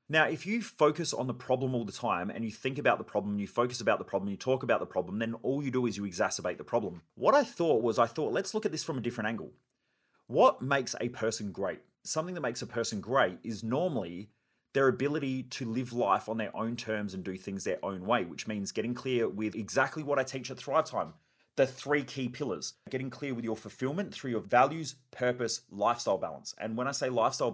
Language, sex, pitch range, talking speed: English, male, 110-140 Hz, 240 wpm